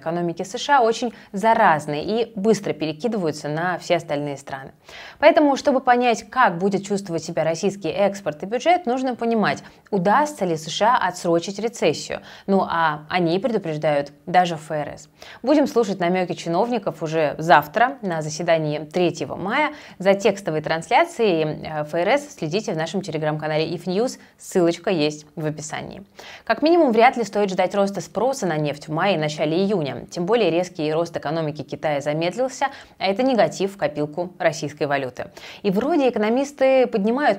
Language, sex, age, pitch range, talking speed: Russian, female, 20-39, 155-220 Hz, 145 wpm